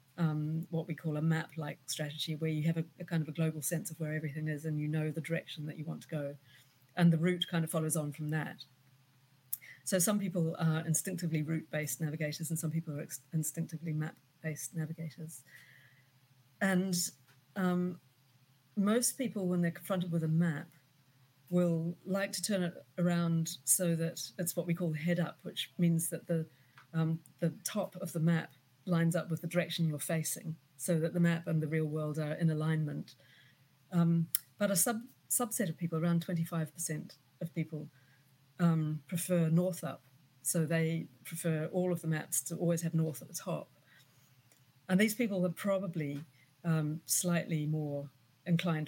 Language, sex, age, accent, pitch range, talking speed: English, female, 40-59, British, 150-170 Hz, 180 wpm